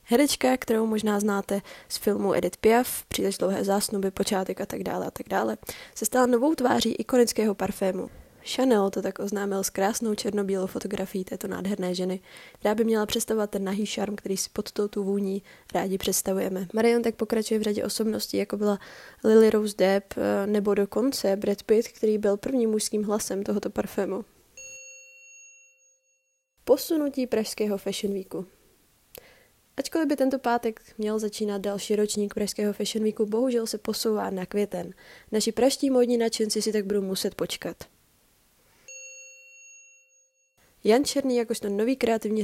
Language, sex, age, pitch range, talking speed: Czech, female, 20-39, 200-240 Hz, 150 wpm